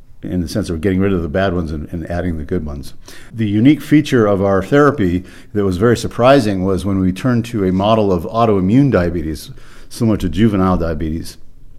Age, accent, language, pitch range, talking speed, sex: 50-69, American, English, 90-110 Hz, 205 wpm, male